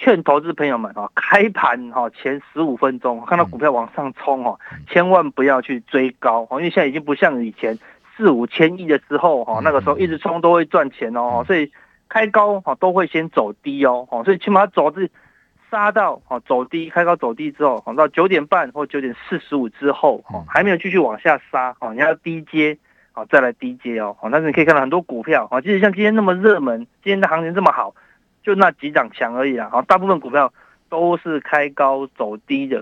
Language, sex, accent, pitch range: Chinese, male, native, 130-180 Hz